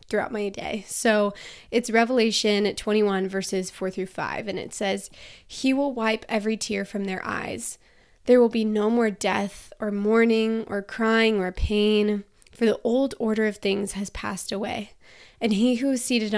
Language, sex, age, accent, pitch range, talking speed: English, female, 20-39, American, 205-245 Hz, 175 wpm